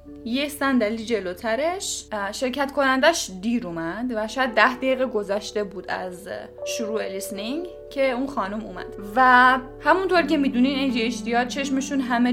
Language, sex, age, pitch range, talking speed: Persian, female, 10-29, 220-275 Hz, 135 wpm